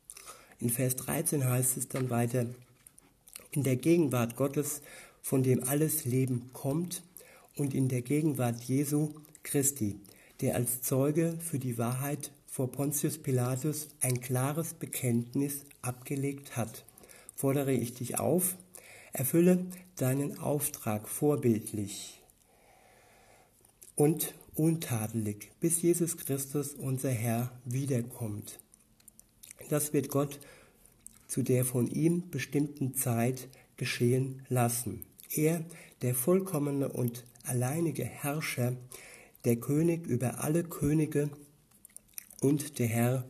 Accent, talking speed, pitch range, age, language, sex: German, 105 wpm, 120-150 Hz, 60-79, German, male